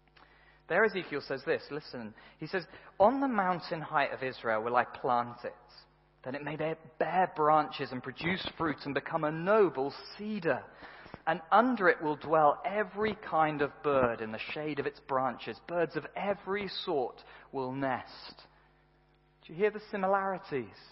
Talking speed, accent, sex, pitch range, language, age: 160 wpm, British, male, 135-200 Hz, English, 40-59